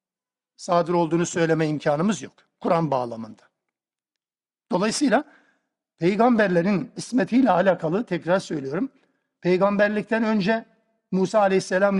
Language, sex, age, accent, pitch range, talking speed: Turkish, male, 60-79, native, 175-220 Hz, 85 wpm